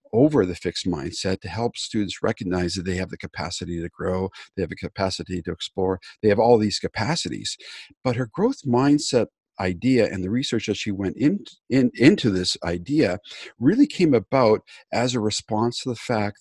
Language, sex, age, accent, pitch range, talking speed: English, male, 50-69, American, 95-120 Hz, 180 wpm